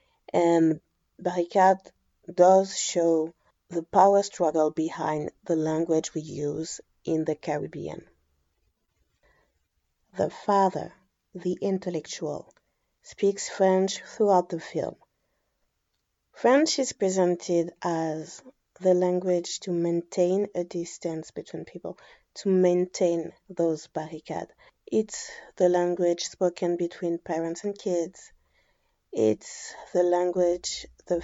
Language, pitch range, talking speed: English, 165-185 Hz, 100 wpm